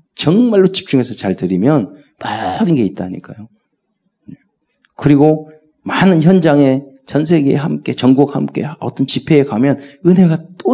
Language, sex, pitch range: Korean, male, 105-155 Hz